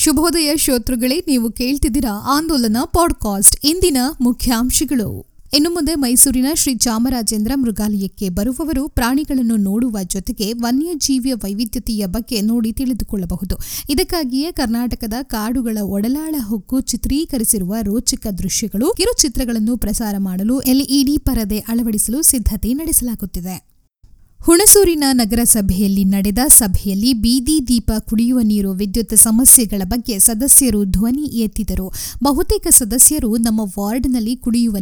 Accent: native